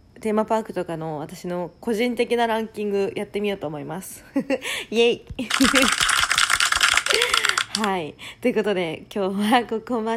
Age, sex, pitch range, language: 20-39, female, 175-225 Hz, Japanese